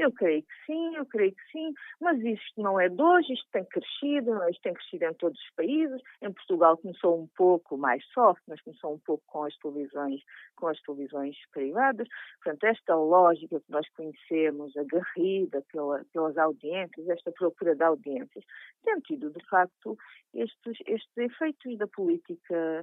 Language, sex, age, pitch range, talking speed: English, female, 50-69, 170-265 Hz, 170 wpm